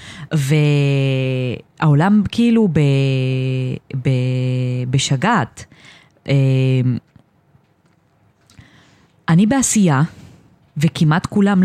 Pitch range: 140-180 Hz